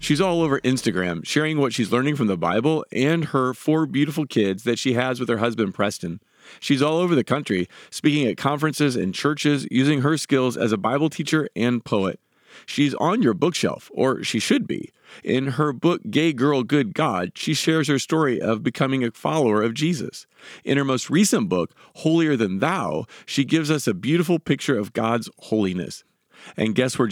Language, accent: English, American